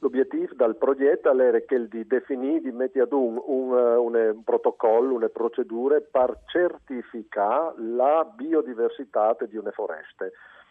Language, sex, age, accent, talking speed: Italian, male, 50-69, native, 135 wpm